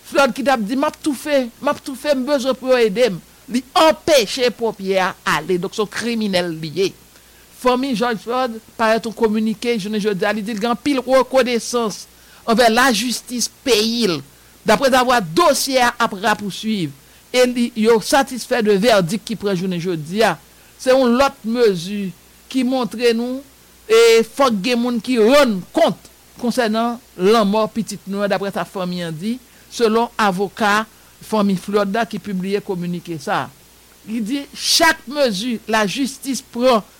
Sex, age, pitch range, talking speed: male, 60-79, 205-255 Hz, 150 wpm